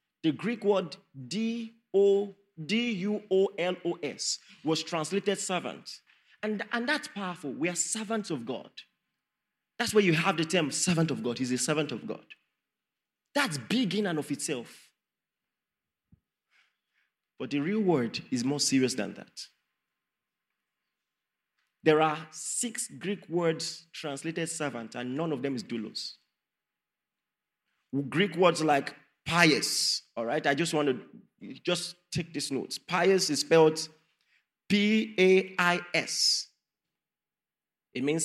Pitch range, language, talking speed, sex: 150-200 Hz, English, 125 wpm, male